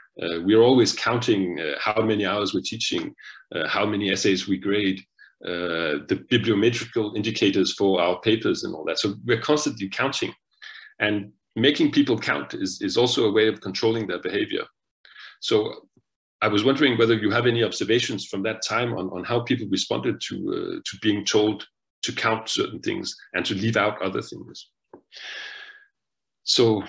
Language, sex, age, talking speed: Danish, male, 40-59, 170 wpm